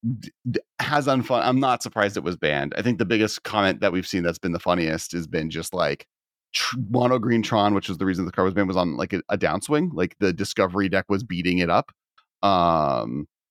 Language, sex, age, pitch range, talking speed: English, male, 30-49, 95-115 Hz, 225 wpm